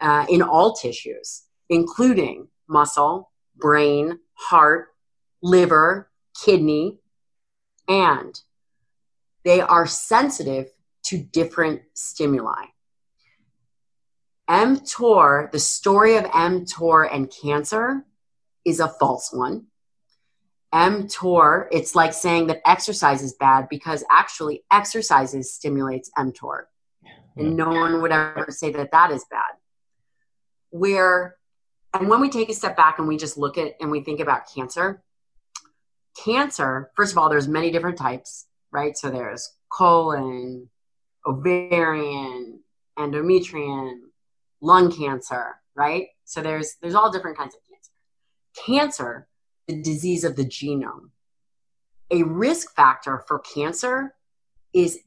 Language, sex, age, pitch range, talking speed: English, female, 30-49, 140-185 Hz, 115 wpm